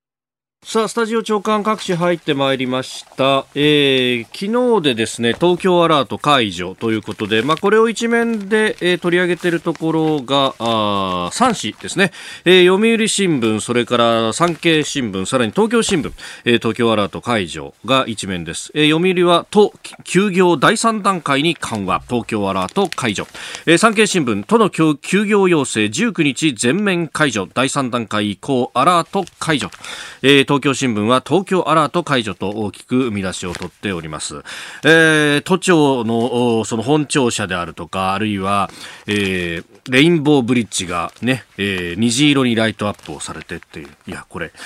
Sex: male